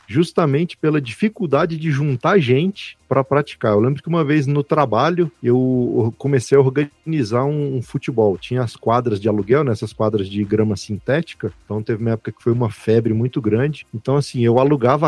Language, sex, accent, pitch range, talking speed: Portuguese, male, Brazilian, 120-160 Hz, 185 wpm